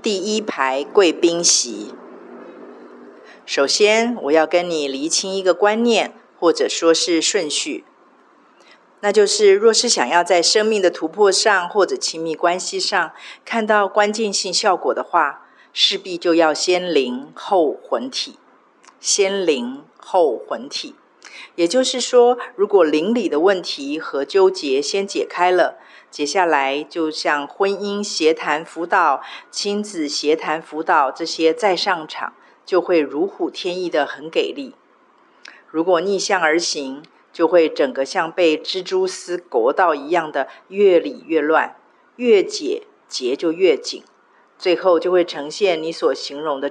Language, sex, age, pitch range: Chinese, female, 50-69, 160-235 Hz